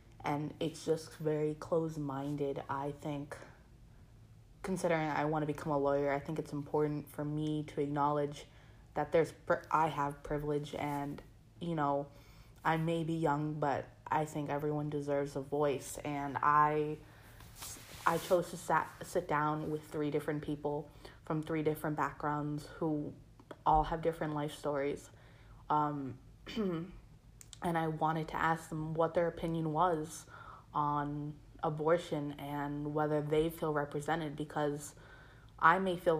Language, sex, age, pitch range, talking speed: English, female, 20-39, 140-155 Hz, 145 wpm